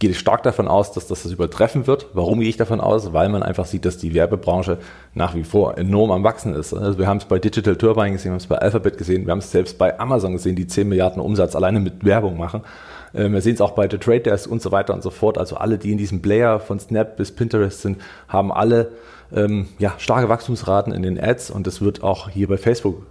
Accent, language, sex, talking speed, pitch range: German, German, male, 255 wpm, 95-115 Hz